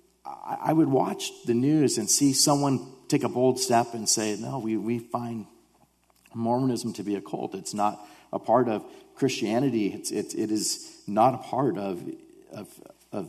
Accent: American